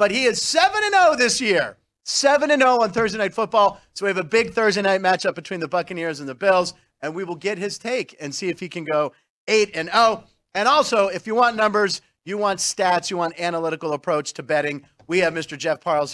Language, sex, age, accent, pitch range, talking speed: English, male, 40-59, American, 160-215 Hz, 215 wpm